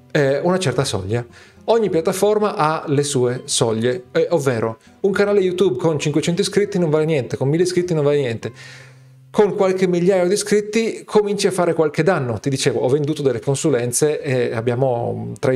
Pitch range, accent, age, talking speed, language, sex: 125-165 Hz, native, 40-59, 175 wpm, Italian, male